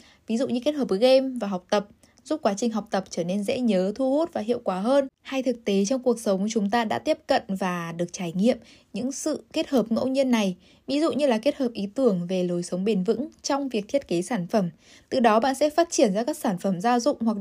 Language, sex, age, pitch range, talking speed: Vietnamese, female, 10-29, 205-275 Hz, 270 wpm